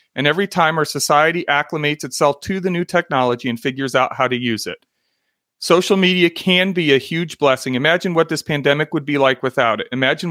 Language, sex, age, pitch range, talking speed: English, male, 40-59, 130-165 Hz, 205 wpm